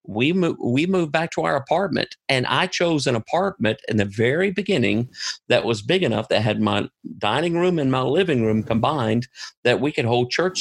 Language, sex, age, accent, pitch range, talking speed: English, male, 50-69, American, 110-140 Hz, 205 wpm